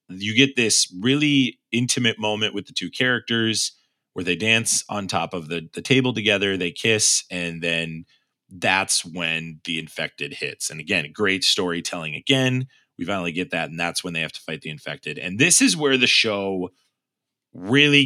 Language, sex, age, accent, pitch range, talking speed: English, male, 30-49, American, 95-130 Hz, 180 wpm